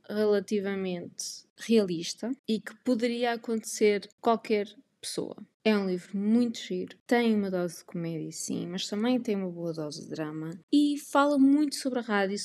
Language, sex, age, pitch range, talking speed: Portuguese, female, 20-39, 190-235 Hz, 165 wpm